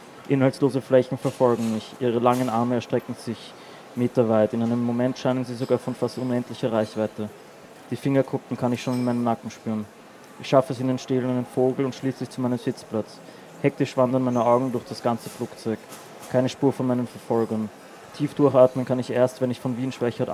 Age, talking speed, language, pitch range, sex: 20-39, 190 wpm, German, 115-130 Hz, male